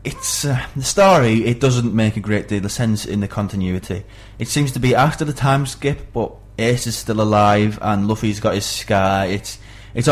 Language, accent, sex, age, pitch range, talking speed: English, British, male, 20-39, 100-110 Hz, 210 wpm